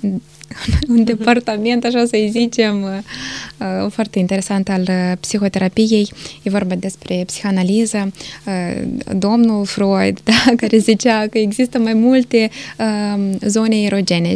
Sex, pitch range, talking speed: female, 200-235 Hz, 105 wpm